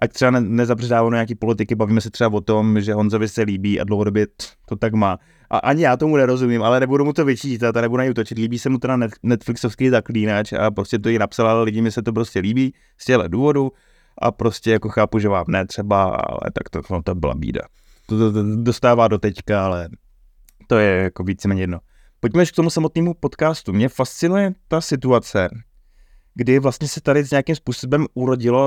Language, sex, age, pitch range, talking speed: Czech, male, 20-39, 110-130 Hz, 205 wpm